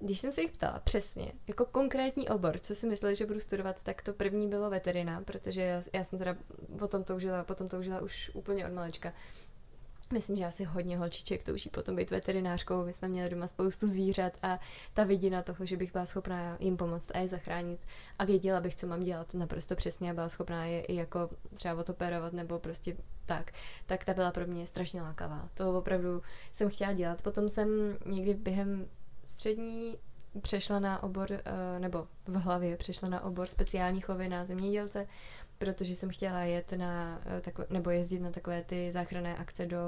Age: 20-39